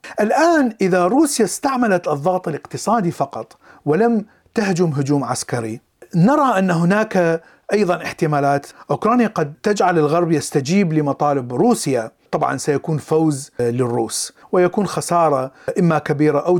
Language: Arabic